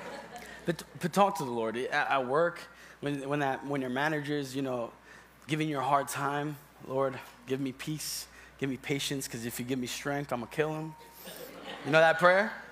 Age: 20-39